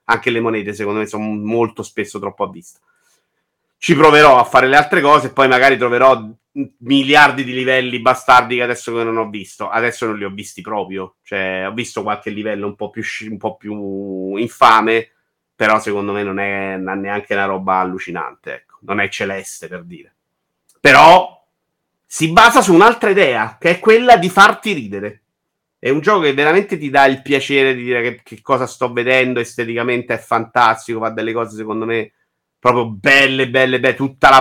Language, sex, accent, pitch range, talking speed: Italian, male, native, 110-140 Hz, 185 wpm